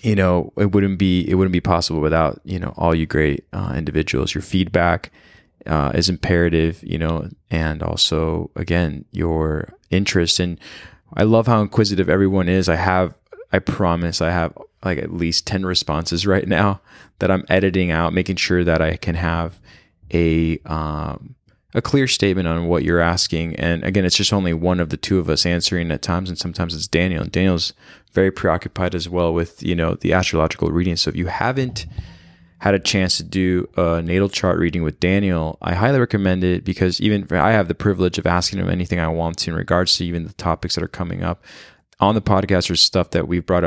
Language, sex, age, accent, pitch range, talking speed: English, male, 20-39, American, 80-95 Hz, 205 wpm